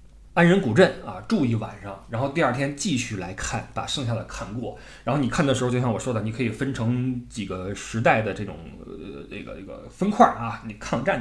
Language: Chinese